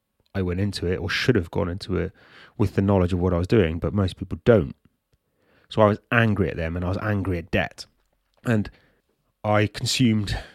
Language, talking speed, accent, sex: English, 210 wpm, British, male